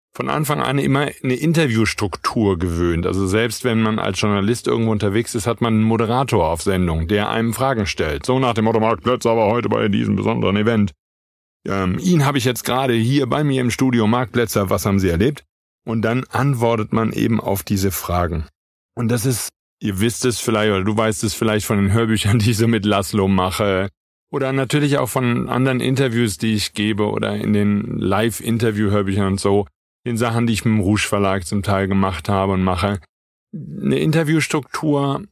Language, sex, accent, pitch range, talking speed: German, male, German, 100-130 Hz, 190 wpm